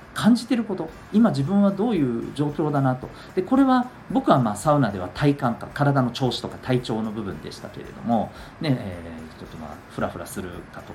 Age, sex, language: 40-59, male, Japanese